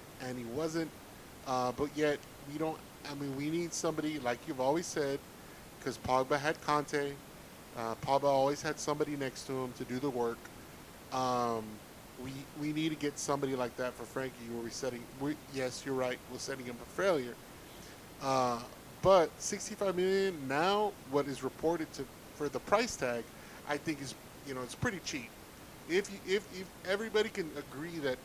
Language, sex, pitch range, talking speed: English, male, 130-155 Hz, 175 wpm